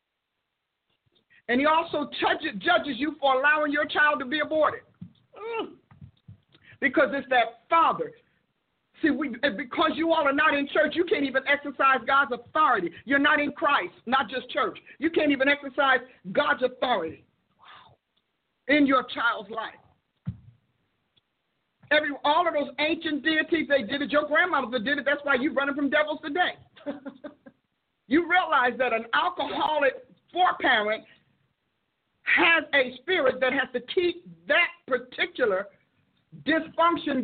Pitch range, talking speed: 265-320 Hz, 140 wpm